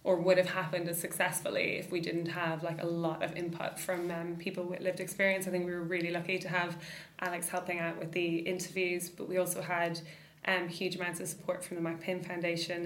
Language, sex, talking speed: English, female, 225 wpm